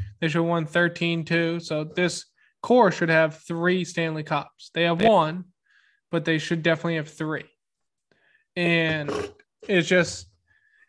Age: 20-39